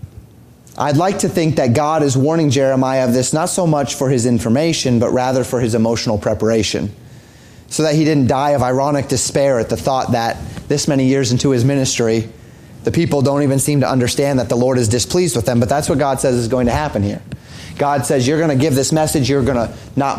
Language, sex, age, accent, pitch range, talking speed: English, male, 30-49, American, 115-155 Hz, 230 wpm